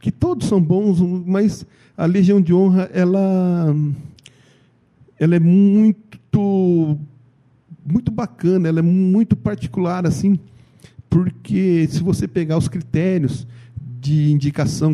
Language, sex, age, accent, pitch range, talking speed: Portuguese, male, 50-69, Brazilian, 125-165 Hz, 115 wpm